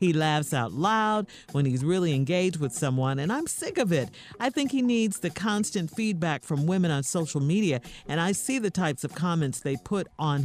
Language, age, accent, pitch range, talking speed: English, 50-69, American, 145-210 Hz, 215 wpm